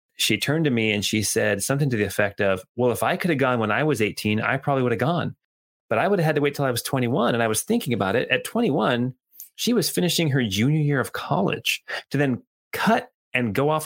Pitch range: 100-135 Hz